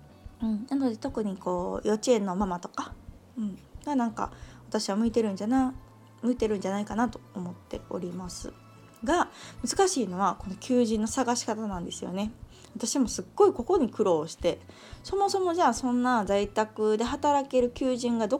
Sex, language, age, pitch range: female, Japanese, 20-39, 180-255 Hz